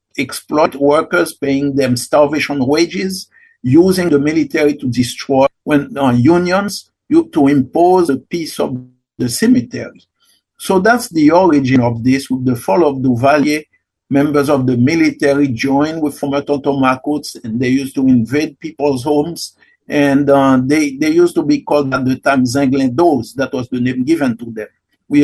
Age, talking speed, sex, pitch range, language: 50-69, 165 wpm, male, 125-155 Hz, English